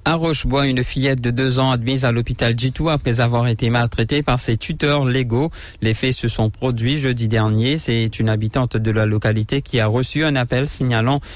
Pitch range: 110-135 Hz